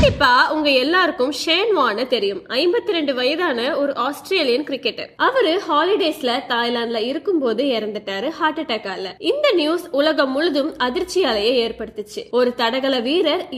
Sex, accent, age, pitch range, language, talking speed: female, native, 20-39, 240-325 Hz, Tamil, 90 wpm